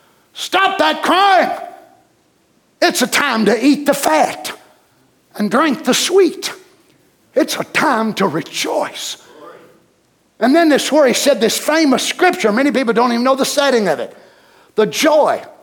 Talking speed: 150 wpm